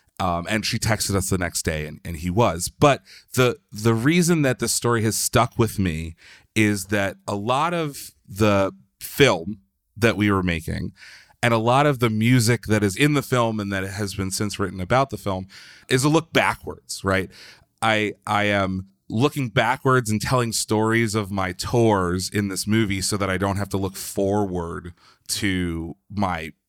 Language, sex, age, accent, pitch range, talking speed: English, male, 30-49, American, 95-115 Hz, 185 wpm